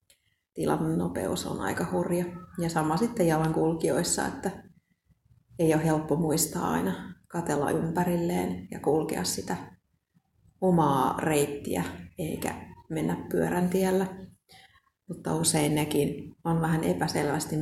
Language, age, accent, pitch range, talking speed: Finnish, 30-49, native, 160-190 Hz, 105 wpm